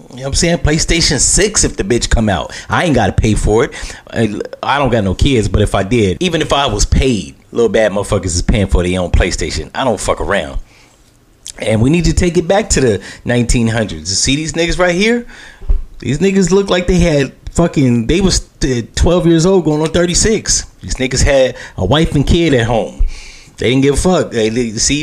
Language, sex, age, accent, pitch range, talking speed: English, male, 30-49, American, 105-145 Hz, 215 wpm